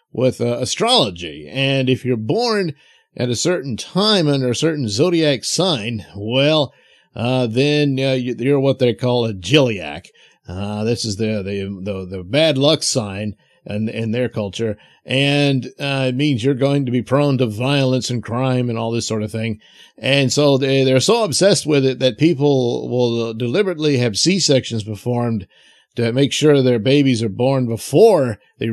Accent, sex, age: American, male, 50-69